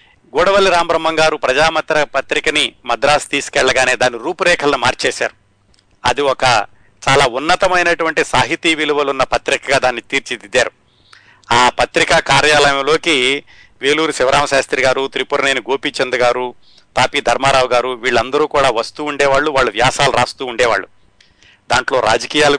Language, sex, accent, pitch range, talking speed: Telugu, male, native, 125-150 Hz, 110 wpm